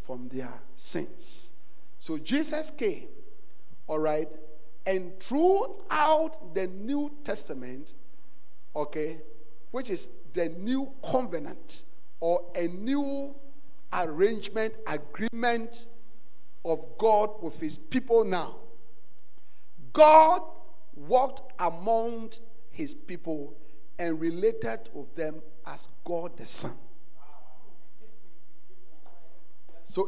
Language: English